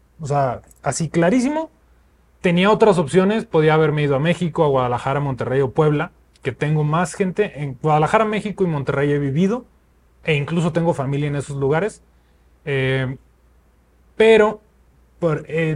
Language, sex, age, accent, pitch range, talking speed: Spanish, male, 30-49, Mexican, 135-190 Hz, 150 wpm